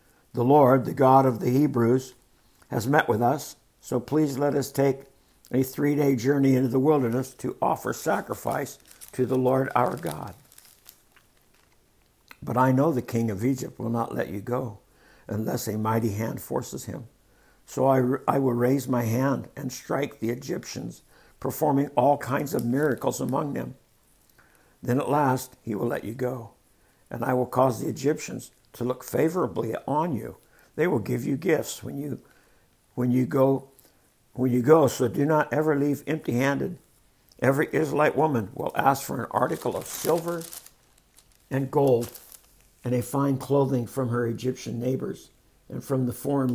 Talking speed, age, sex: 165 wpm, 60-79, male